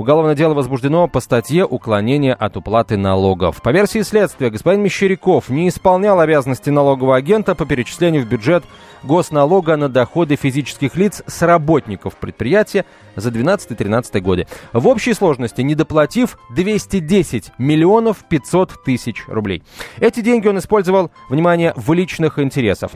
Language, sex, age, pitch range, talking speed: Russian, male, 30-49, 125-185 Hz, 140 wpm